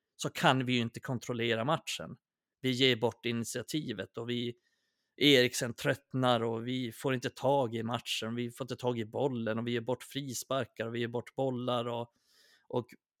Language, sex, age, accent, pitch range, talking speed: Swedish, male, 30-49, native, 115-130 Hz, 180 wpm